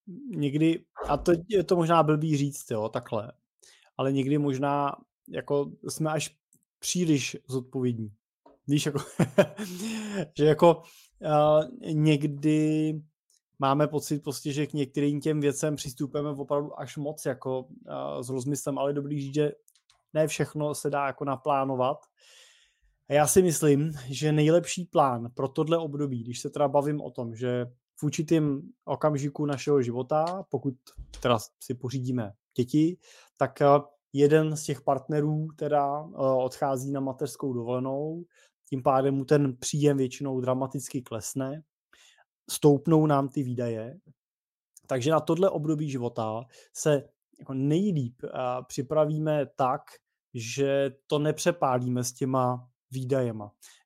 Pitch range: 130-155 Hz